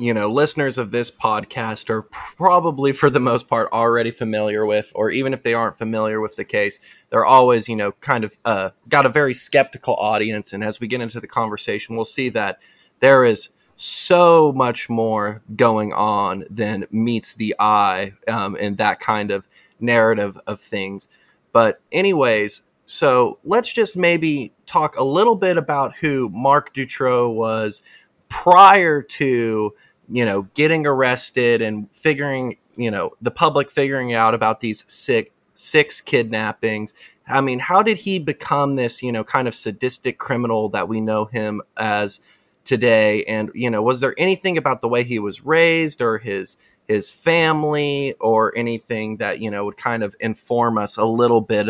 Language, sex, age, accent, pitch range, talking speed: English, male, 20-39, American, 110-135 Hz, 170 wpm